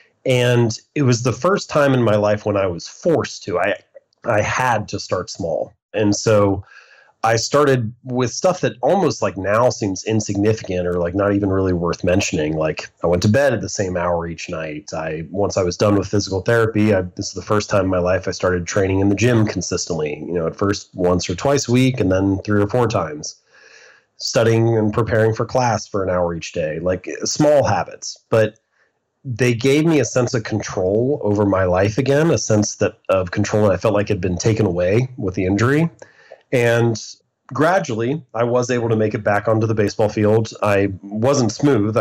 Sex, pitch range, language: male, 95-115 Hz, English